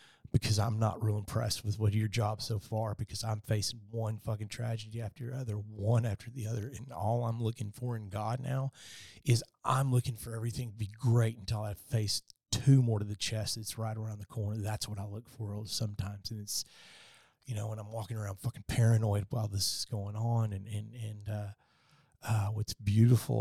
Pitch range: 105-120 Hz